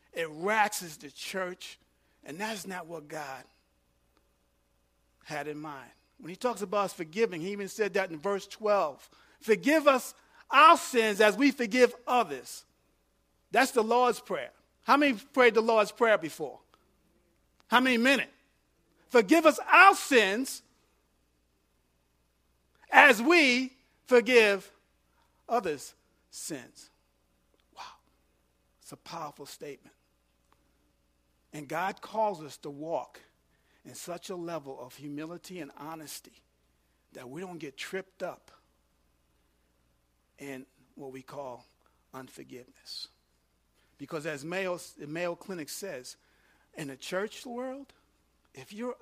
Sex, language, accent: male, English, American